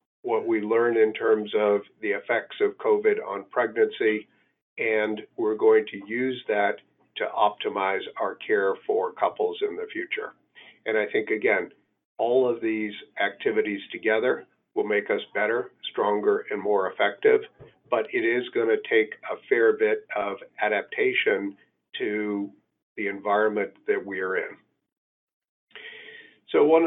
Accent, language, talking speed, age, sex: American, English, 145 wpm, 50-69, male